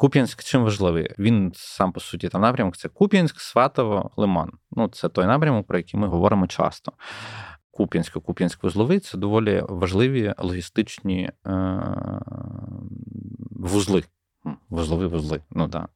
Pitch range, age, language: 90-115 Hz, 20-39, Ukrainian